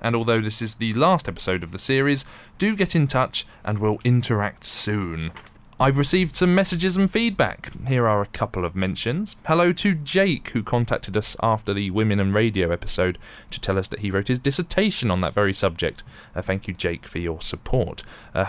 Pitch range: 95-145 Hz